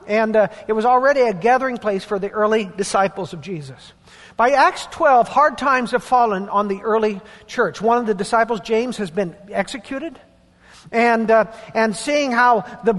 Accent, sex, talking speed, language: American, male, 180 wpm, English